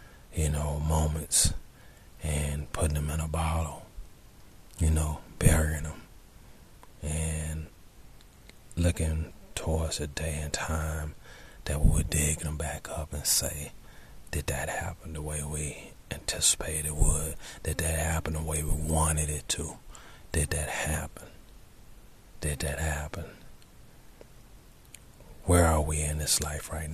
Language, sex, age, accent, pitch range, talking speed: English, male, 40-59, American, 75-85 Hz, 135 wpm